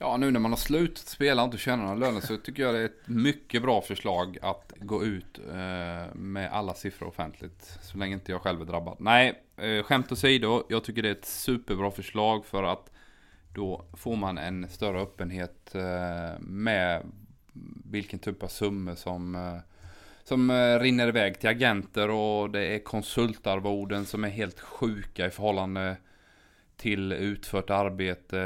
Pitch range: 95-110 Hz